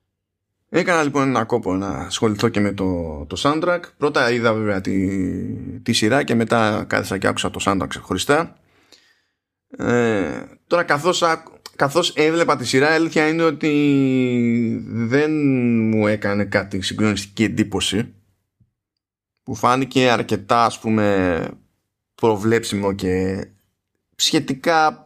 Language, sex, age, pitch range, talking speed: Greek, male, 20-39, 100-140 Hz, 115 wpm